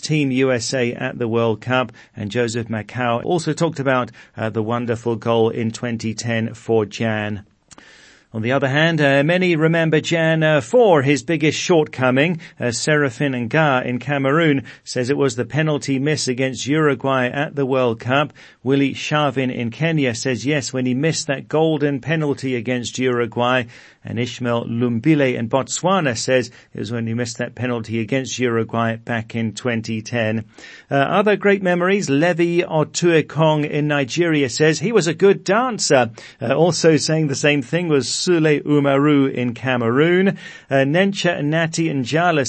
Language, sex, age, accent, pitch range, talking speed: English, male, 40-59, British, 120-150 Hz, 155 wpm